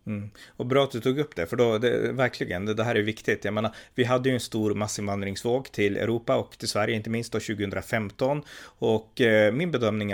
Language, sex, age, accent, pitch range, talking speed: Swedish, male, 30-49, native, 100-120 Hz, 225 wpm